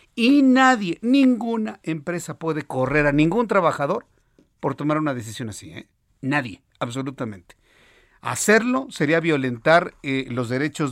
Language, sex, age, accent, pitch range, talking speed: Spanish, male, 50-69, Mexican, 130-170 Hz, 120 wpm